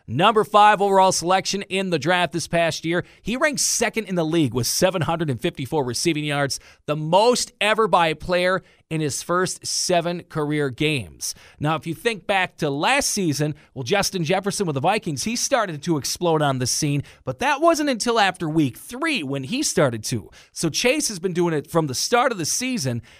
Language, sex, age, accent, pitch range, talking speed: English, male, 40-59, American, 150-210 Hz, 195 wpm